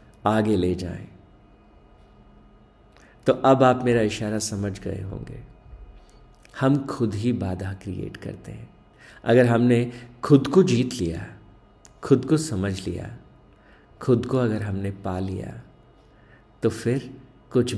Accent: native